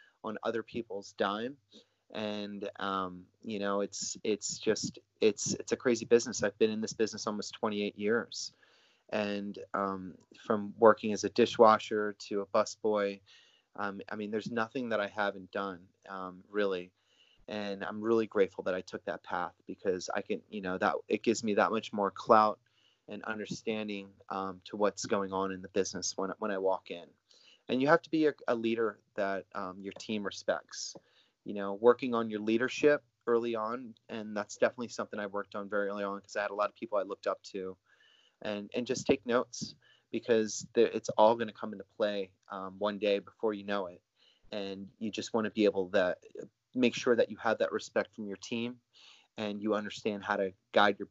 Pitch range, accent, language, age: 100-110 Hz, American, English, 30-49